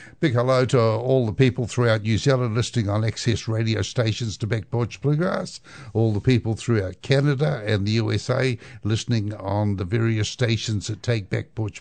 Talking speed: 180 wpm